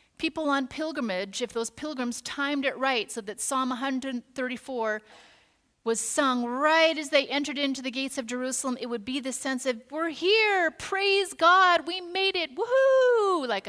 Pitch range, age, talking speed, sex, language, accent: 225-285 Hz, 30-49, 170 wpm, female, English, American